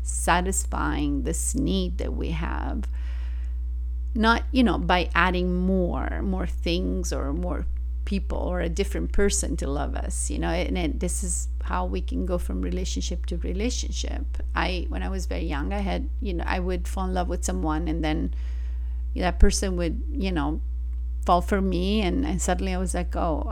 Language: English